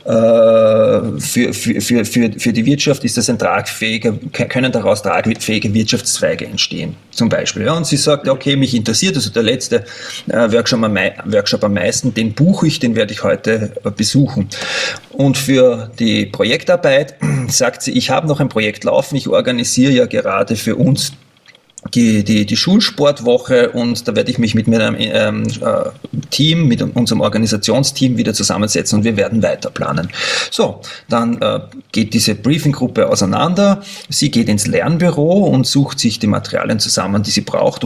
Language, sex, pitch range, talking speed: German, male, 110-140 Hz, 155 wpm